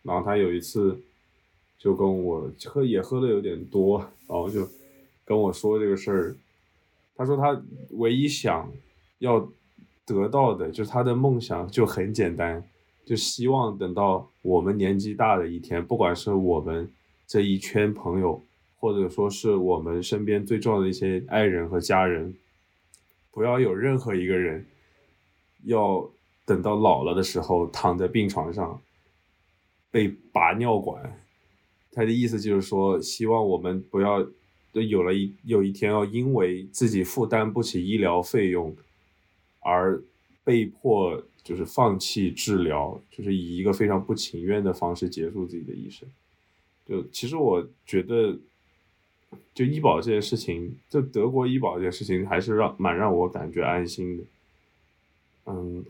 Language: Chinese